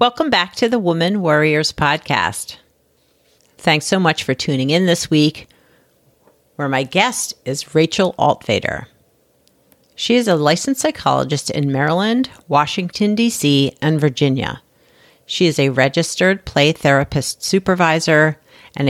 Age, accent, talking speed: 50-69, American, 125 wpm